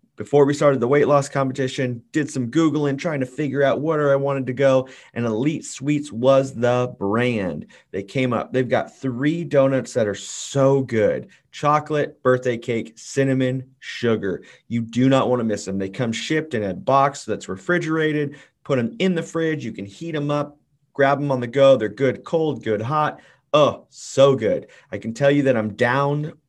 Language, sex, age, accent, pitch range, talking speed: English, male, 30-49, American, 120-145 Hz, 195 wpm